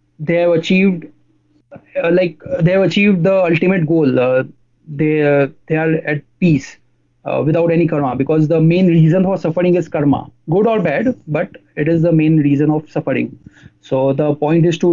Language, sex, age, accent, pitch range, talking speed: English, male, 20-39, Indian, 140-165 Hz, 190 wpm